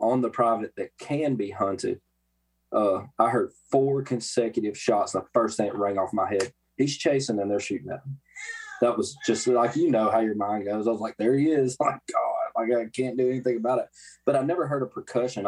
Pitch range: 95-125 Hz